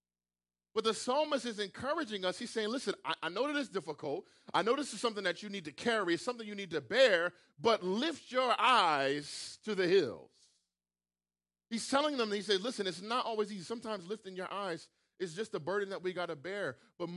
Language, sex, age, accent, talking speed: English, male, 40-59, American, 215 wpm